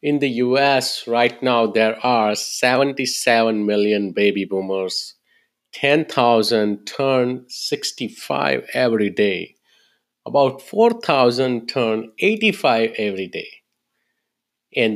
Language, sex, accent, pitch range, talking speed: English, male, Indian, 105-130 Hz, 90 wpm